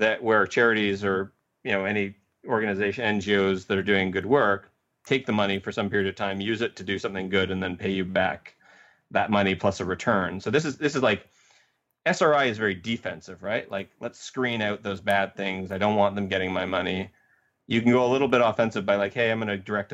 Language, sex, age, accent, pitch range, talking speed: English, male, 30-49, American, 95-110 Hz, 230 wpm